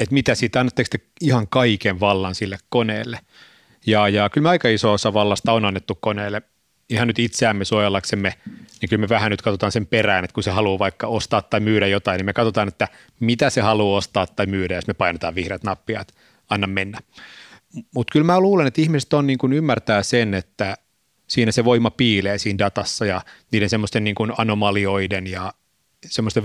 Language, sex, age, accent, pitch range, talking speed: Finnish, male, 30-49, native, 100-120 Hz, 195 wpm